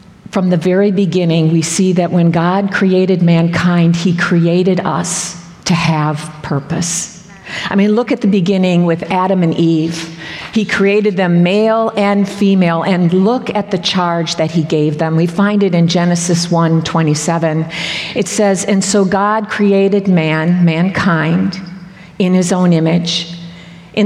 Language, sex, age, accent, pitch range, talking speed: English, female, 50-69, American, 170-200 Hz, 150 wpm